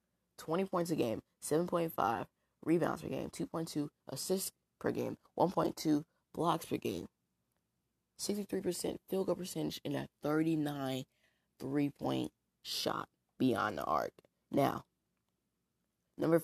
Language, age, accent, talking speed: English, 20-39, American, 110 wpm